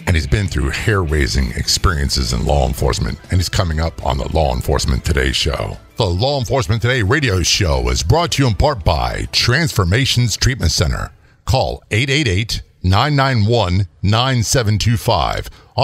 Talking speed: 140 wpm